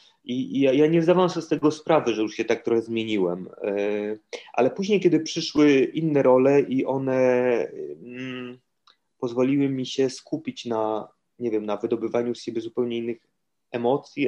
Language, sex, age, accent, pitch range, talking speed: Polish, male, 30-49, native, 115-140 Hz, 155 wpm